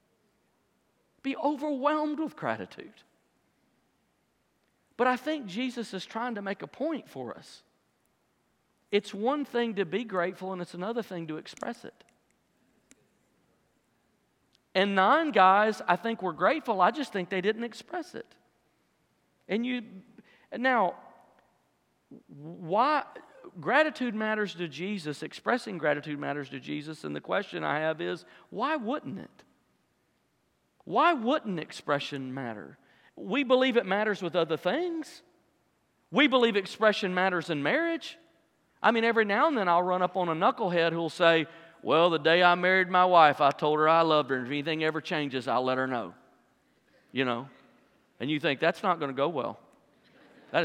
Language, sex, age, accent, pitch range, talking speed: English, male, 40-59, American, 155-245 Hz, 155 wpm